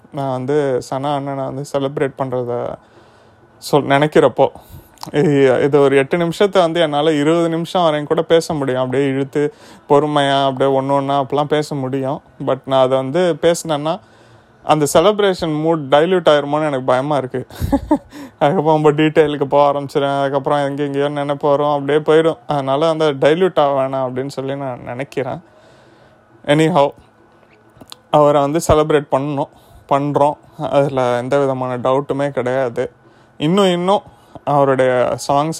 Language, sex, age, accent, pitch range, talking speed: Tamil, male, 30-49, native, 135-155 Hz, 130 wpm